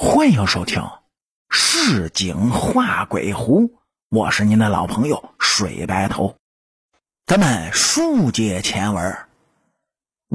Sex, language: male, Chinese